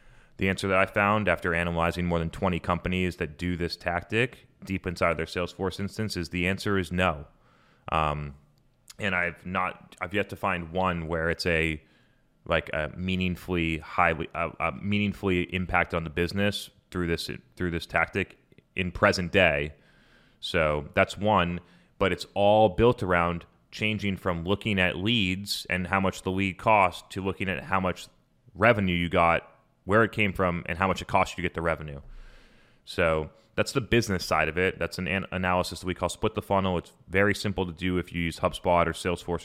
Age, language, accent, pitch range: 30-49, English, American, 85-100 Hz